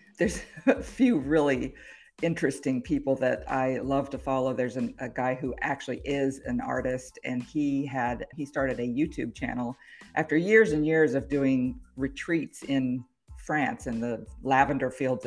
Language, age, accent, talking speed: English, 50-69, American, 155 wpm